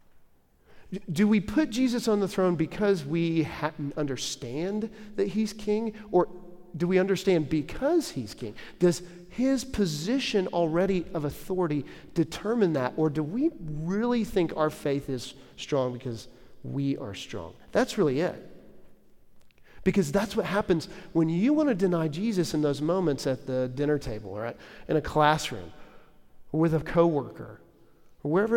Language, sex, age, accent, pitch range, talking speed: English, male, 40-59, American, 140-195 Hz, 150 wpm